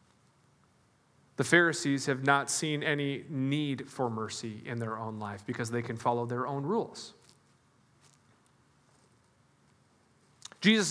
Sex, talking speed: male, 115 wpm